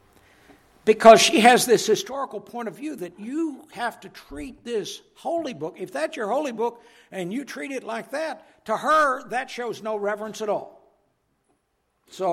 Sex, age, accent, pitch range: male, 60-79, American, 155-235 Hz